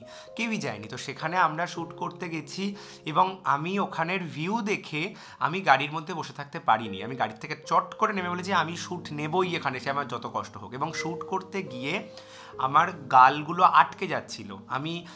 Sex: male